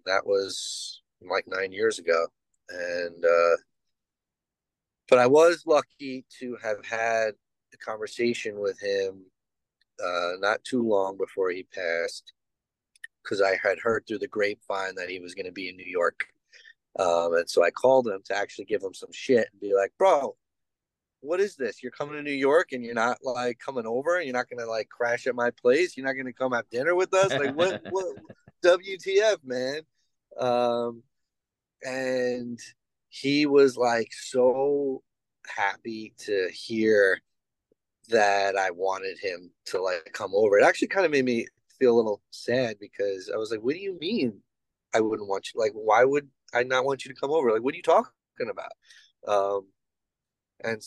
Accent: American